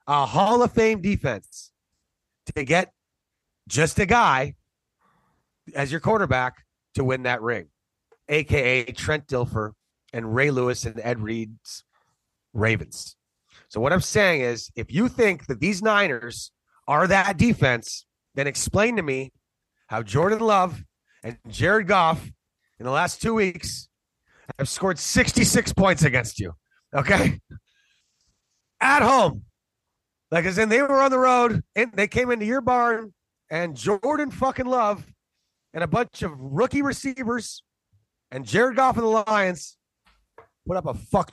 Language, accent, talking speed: English, American, 145 wpm